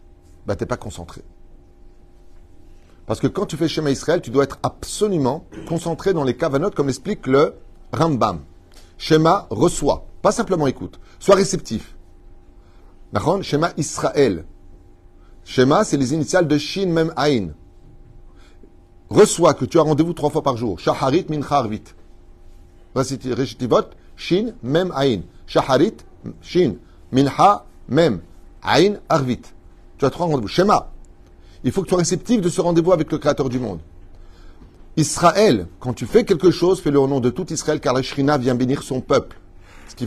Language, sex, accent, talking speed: French, male, French, 160 wpm